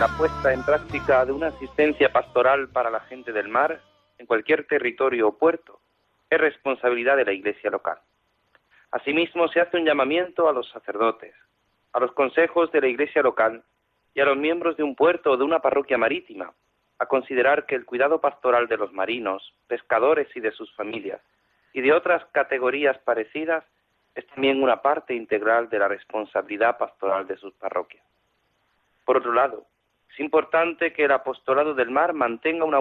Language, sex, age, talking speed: Spanish, male, 40-59, 170 wpm